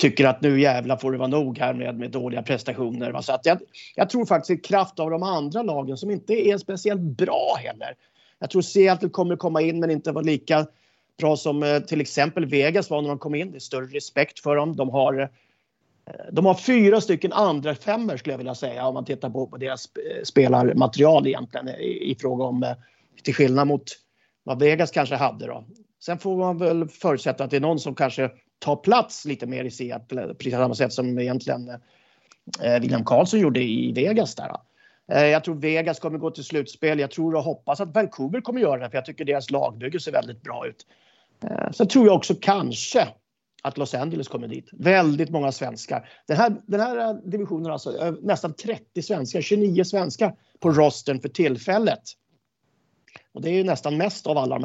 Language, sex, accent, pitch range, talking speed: English, male, Swedish, 135-185 Hz, 200 wpm